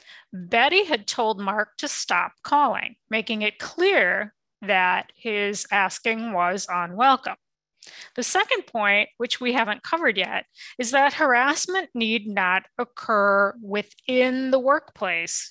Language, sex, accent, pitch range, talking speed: English, female, American, 210-280 Hz, 125 wpm